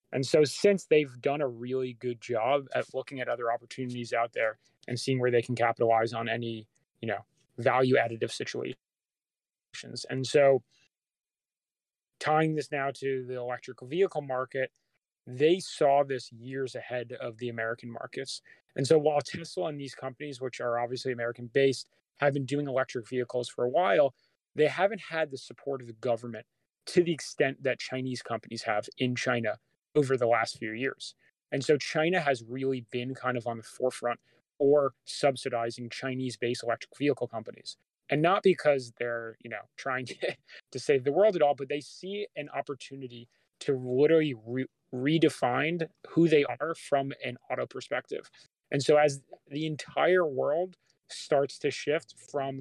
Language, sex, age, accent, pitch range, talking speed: English, male, 20-39, American, 120-145 Hz, 170 wpm